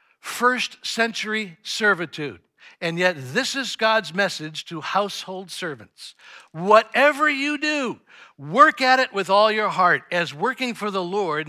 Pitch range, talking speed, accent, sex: 175-250 Hz, 140 wpm, American, male